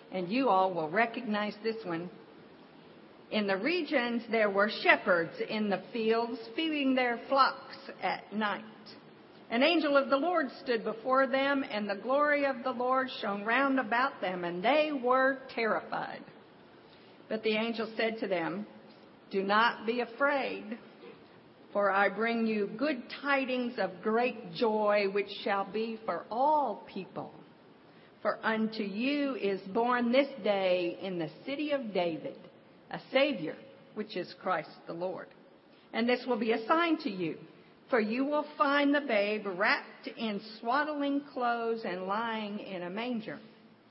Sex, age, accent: female, 50-69, American